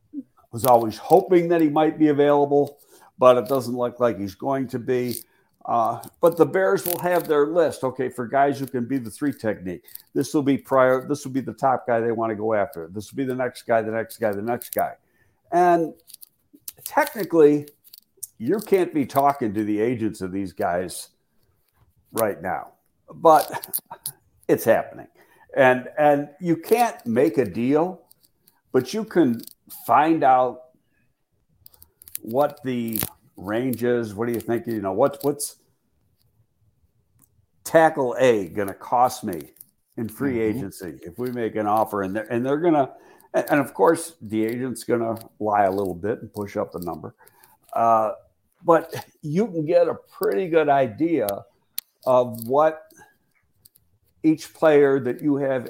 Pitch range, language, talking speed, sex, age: 115-155 Hz, English, 165 wpm, male, 60-79